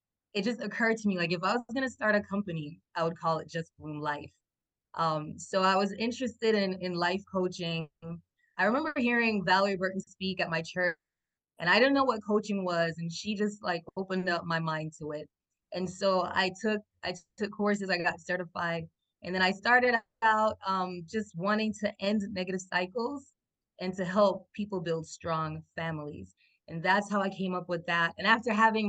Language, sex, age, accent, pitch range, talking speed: English, female, 20-39, American, 170-205 Hz, 200 wpm